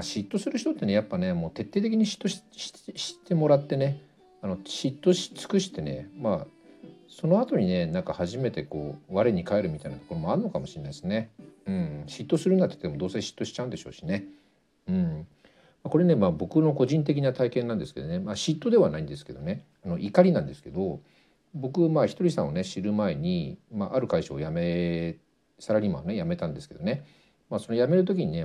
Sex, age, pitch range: male, 50-69, 110-175 Hz